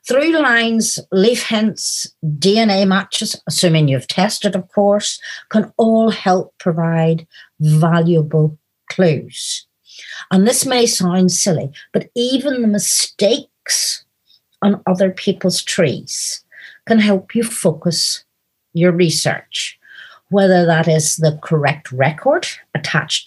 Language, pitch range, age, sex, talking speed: English, 165-225 Hz, 50-69, female, 110 wpm